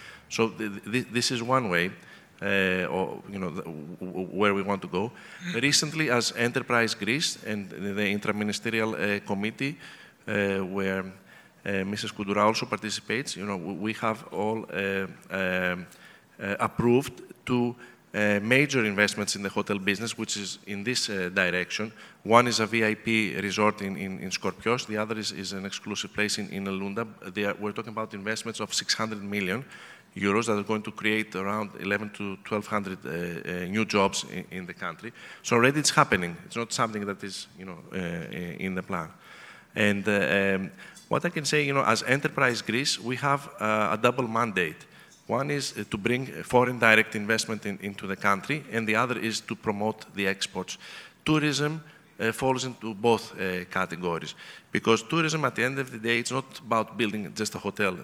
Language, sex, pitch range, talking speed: English, male, 100-115 Hz, 180 wpm